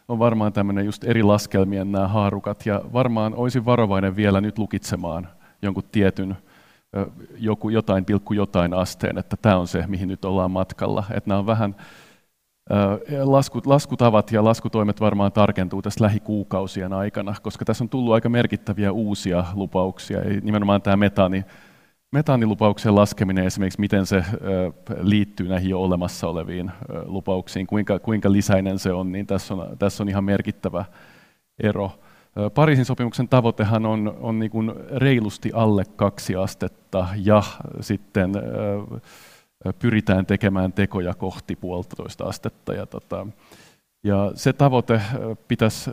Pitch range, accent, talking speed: 95-110 Hz, native, 130 wpm